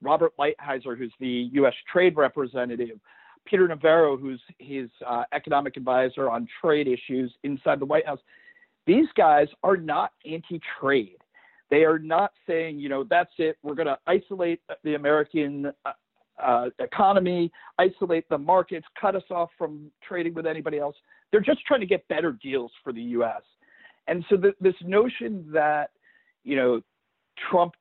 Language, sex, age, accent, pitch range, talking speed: English, male, 50-69, American, 140-205 Hz, 155 wpm